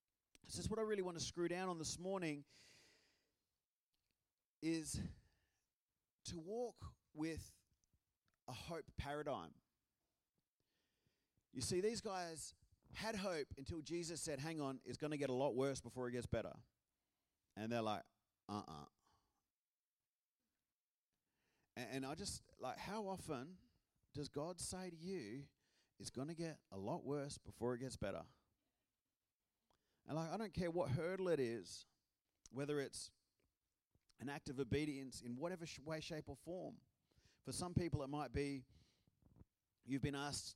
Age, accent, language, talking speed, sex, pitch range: 30-49, Australian, English, 145 wpm, male, 105-150 Hz